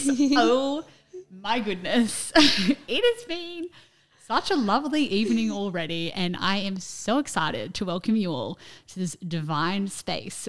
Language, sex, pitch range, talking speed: English, female, 170-235 Hz, 135 wpm